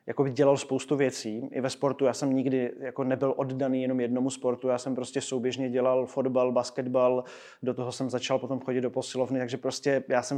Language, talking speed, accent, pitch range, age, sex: Czech, 200 wpm, native, 130-140 Hz, 20-39, male